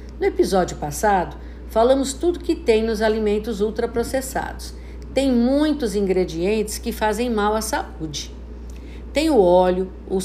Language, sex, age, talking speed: Portuguese, female, 50-69, 130 wpm